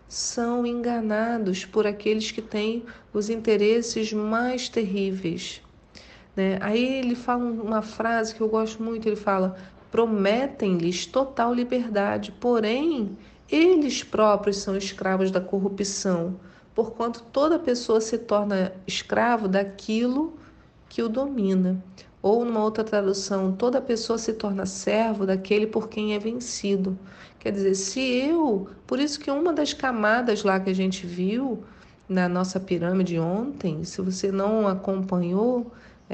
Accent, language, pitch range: Brazilian, Portuguese, 190-235 Hz